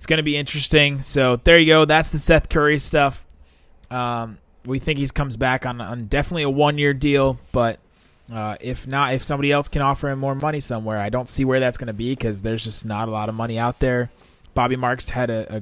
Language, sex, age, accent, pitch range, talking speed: English, male, 20-39, American, 100-130 Hz, 240 wpm